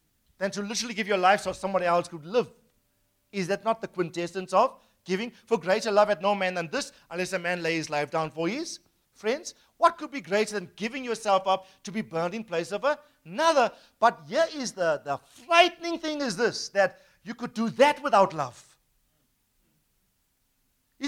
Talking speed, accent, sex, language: 195 wpm, South African, male, English